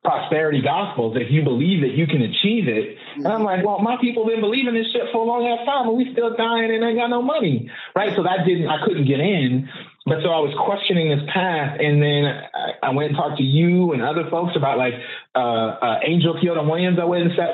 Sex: male